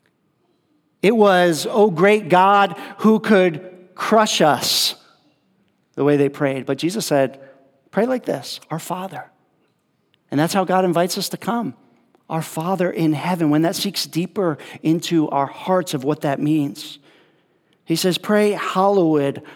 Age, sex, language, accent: 40-59, male, English, American